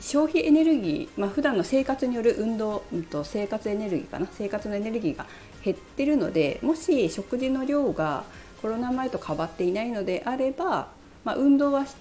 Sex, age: female, 40-59